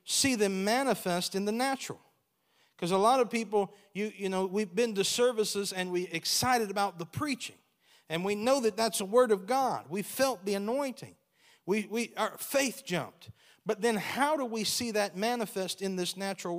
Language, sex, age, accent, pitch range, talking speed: English, male, 40-59, American, 160-220 Hz, 190 wpm